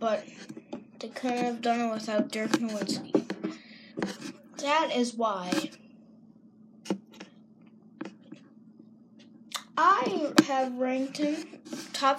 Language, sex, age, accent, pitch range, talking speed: English, female, 10-29, American, 225-280 Hz, 85 wpm